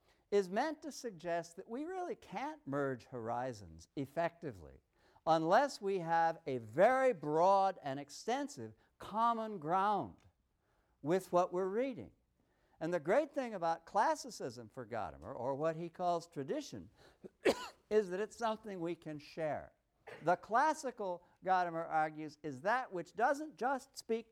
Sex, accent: male, American